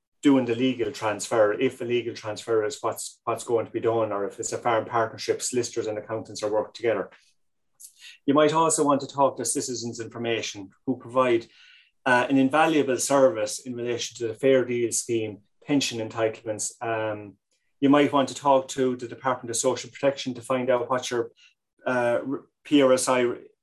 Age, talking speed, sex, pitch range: 30-49, 180 wpm, male, 115-130 Hz